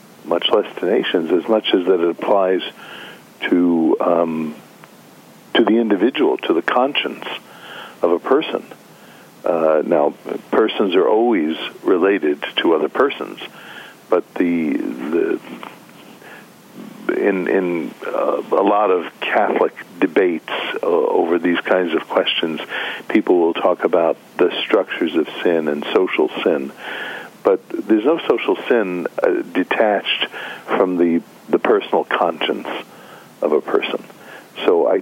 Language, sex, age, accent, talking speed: English, male, 60-79, American, 130 wpm